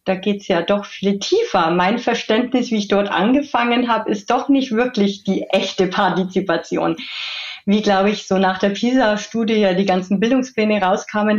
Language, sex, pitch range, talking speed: German, female, 190-230 Hz, 175 wpm